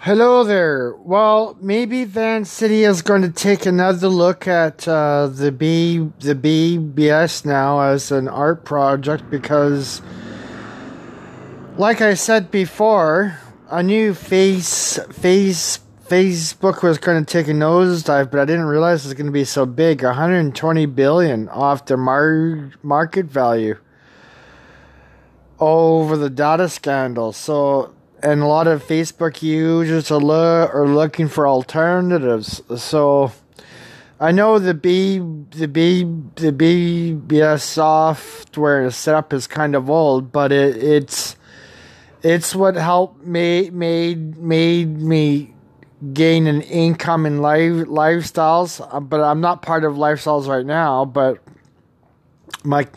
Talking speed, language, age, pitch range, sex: 125 wpm, English, 20-39, 140-170 Hz, male